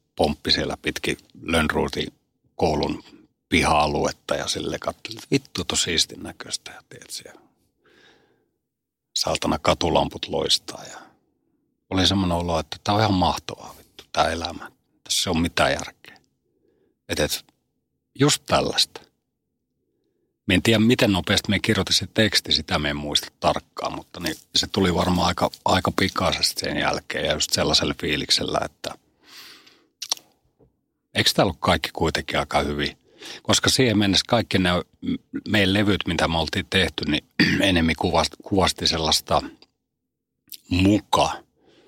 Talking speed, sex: 130 wpm, male